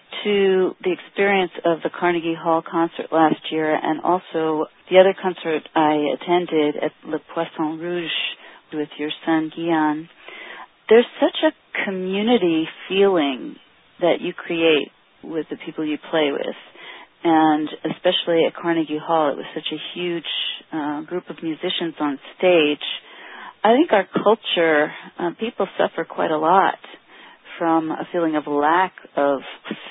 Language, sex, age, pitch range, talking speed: English, female, 40-59, 155-195 Hz, 140 wpm